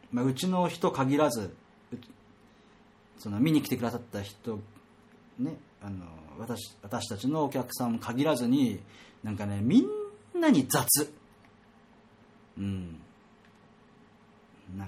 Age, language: 40-59, Japanese